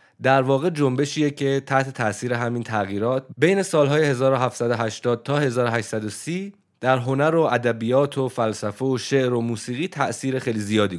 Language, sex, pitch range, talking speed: English, male, 110-150 Hz, 140 wpm